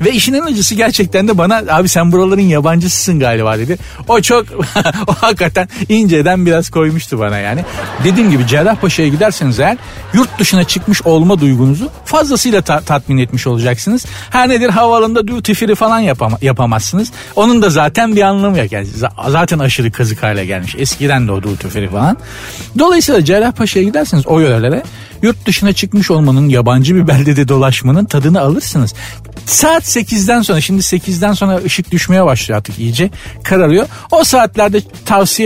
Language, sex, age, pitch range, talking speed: Turkish, male, 50-69, 125-195 Hz, 155 wpm